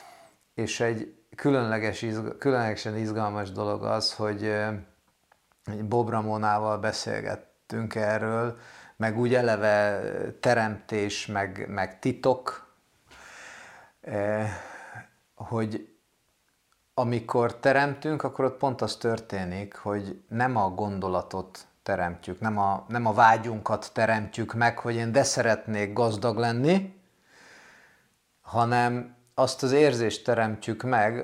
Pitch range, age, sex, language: 105-120 Hz, 30-49, male, Hungarian